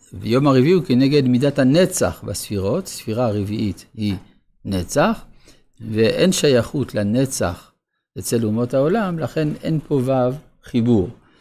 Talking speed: 115 wpm